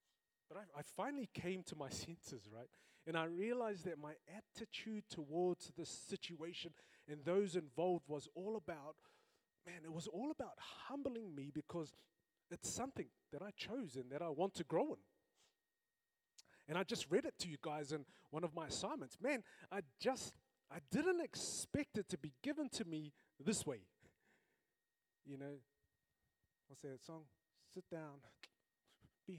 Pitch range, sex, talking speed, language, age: 150-215 Hz, male, 165 wpm, English, 30-49